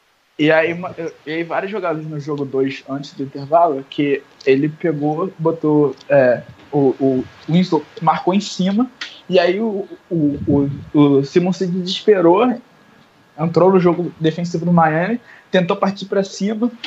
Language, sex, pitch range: Portuguese, male, 150-190 Hz